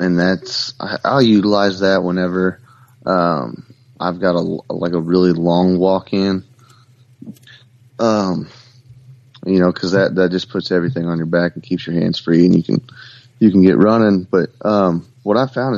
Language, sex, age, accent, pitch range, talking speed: English, male, 30-49, American, 90-120 Hz, 155 wpm